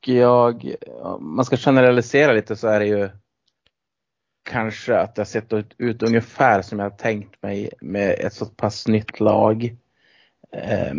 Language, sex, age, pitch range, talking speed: Swedish, male, 30-49, 100-115 Hz, 160 wpm